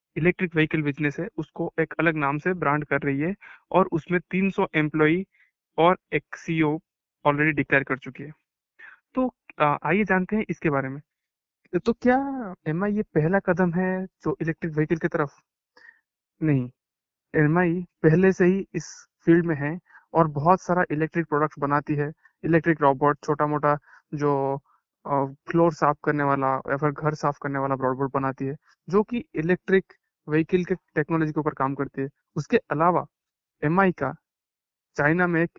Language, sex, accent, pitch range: Hindi, male, native, 145-180 Hz